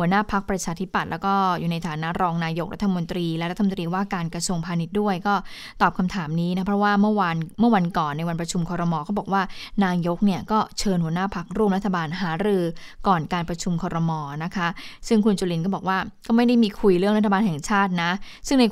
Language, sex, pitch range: Thai, female, 175-220 Hz